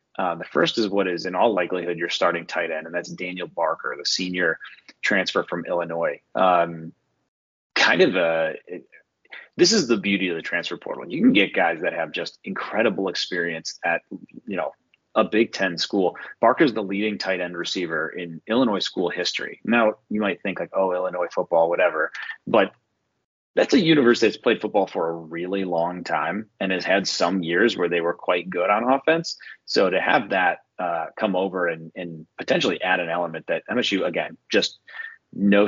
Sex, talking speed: male, 190 wpm